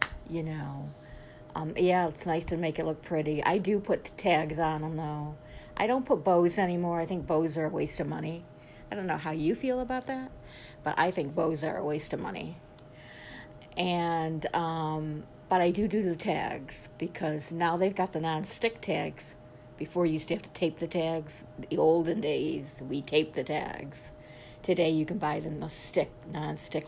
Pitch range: 155-195 Hz